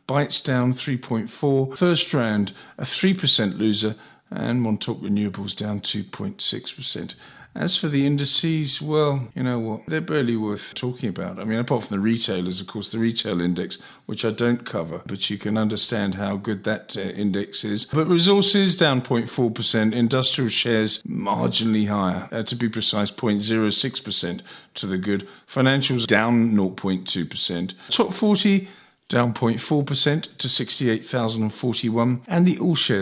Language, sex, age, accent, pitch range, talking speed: English, male, 50-69, British, 105-140 Hz, 145 wpm